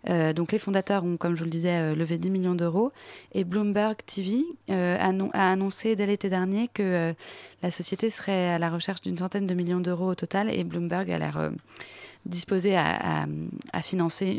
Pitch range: 170-205 Hz